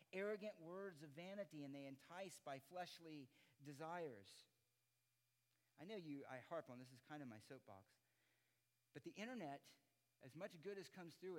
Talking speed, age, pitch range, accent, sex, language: 165 wpm, 50-69, 120-205 Hz, American, male, English